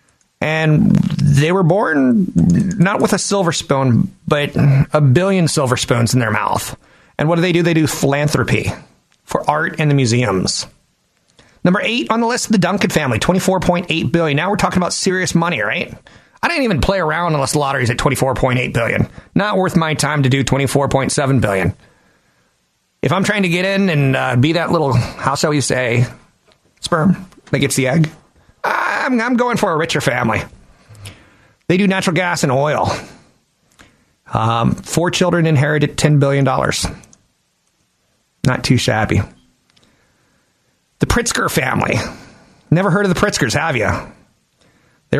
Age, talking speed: 30-49, 160 wpm